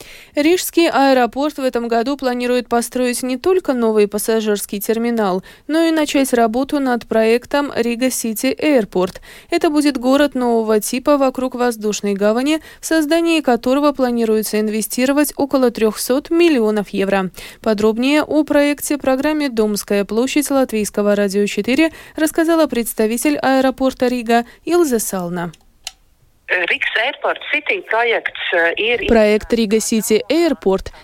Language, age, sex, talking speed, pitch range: Russian, 20-39, female, 100 wpm, 220-290 Hz